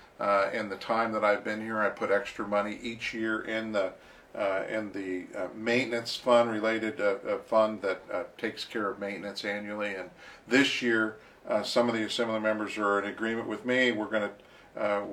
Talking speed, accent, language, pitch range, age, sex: 200 wpm, American, English, 105-120 Hz, 50-69, male